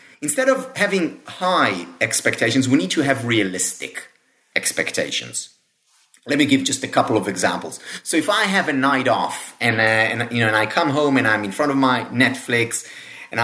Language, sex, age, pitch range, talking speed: English, male, 30-49, 130-210 Hz, 190 wpm